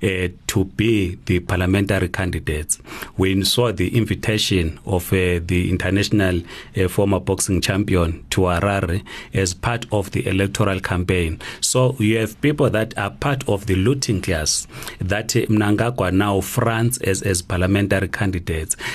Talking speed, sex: 145 wpm, male